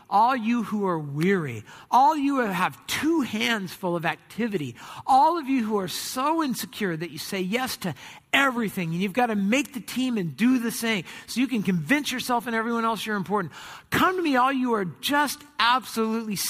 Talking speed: 205 wpm